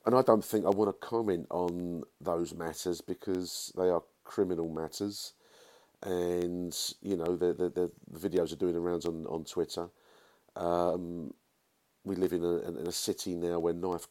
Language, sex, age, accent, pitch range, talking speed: English, male, 40-59, British, 85-95 Hz, 170 wpm